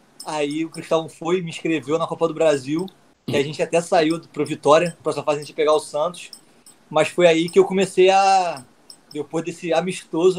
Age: 20-39